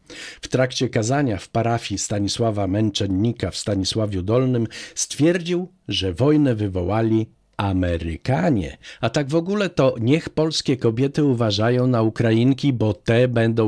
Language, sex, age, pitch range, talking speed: Polish, male, 50-69, 100-135 Hz, 125 wpm